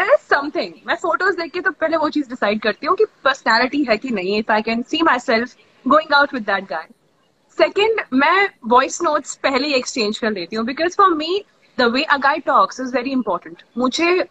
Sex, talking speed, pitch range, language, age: female, 90 wpm, 245-330 Hz, Hindi, 20-39